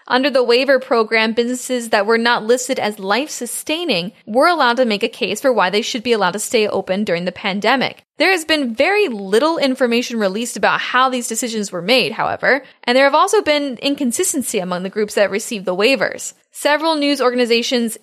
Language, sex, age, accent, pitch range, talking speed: English, female, 10-29, American, 215-265 Hz, 195 wpm